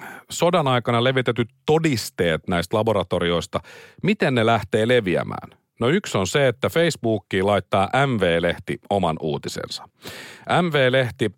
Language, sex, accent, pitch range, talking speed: Finnish, male, native, 100-145 Hz, 110 wpm